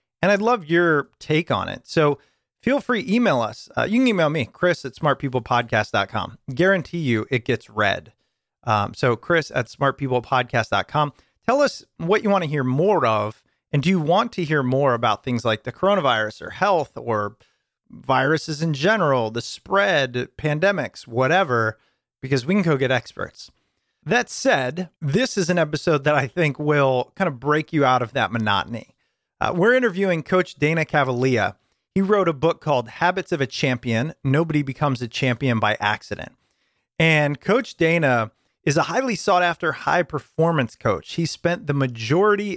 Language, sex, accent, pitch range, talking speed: English, male, American, 125-170 Hz, 170 wpm